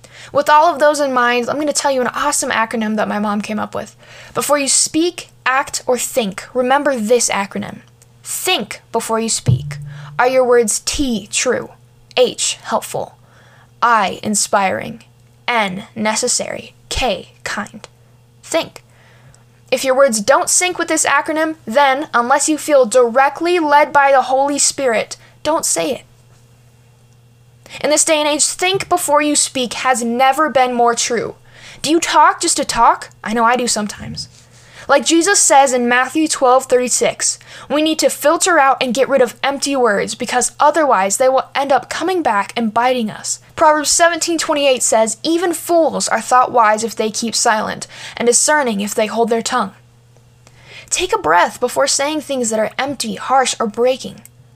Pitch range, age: 210-290 Hz, 10-29